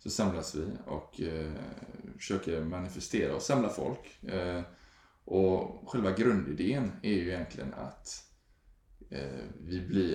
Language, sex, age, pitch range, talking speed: Swedish, male, 20-39, 80-100 Hz, 125 wpm